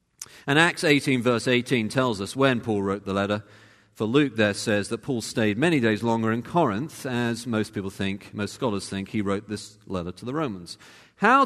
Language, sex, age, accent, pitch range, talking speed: English, male, 40-59, British, 105-150 Hz, 205 wpm